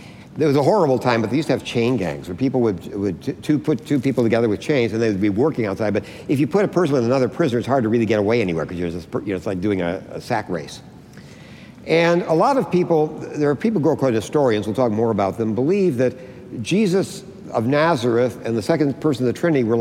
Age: 60-79